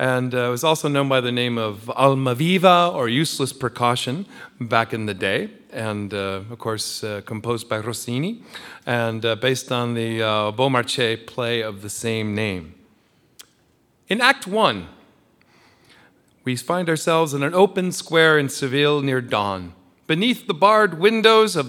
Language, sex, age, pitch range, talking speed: English, male, 40-59, 120-190 Hz, 160 wpm